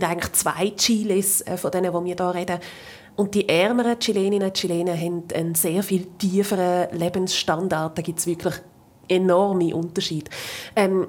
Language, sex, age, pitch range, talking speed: German, female, 20-39, 175-210 Hz, 150 wpm